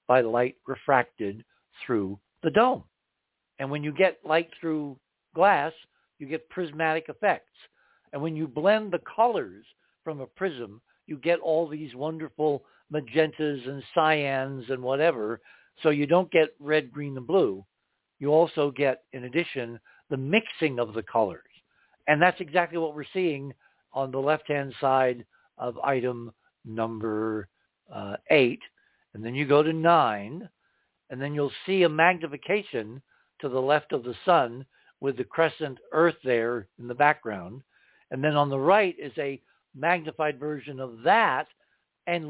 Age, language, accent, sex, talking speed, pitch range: 60-79, English, American, male, 155 wpm, 130-165 Hz